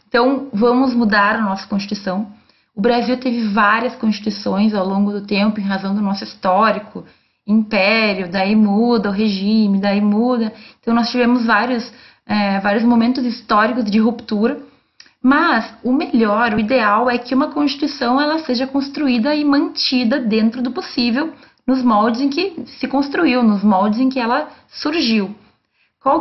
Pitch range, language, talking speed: 210-255 Hz, Portuguese, 150 wpm